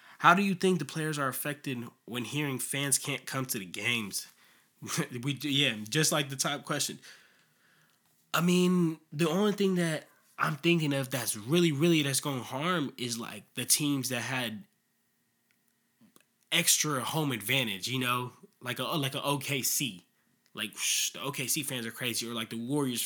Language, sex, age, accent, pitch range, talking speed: English, male, 20-39, American, 120-155 Hz, 175 wpm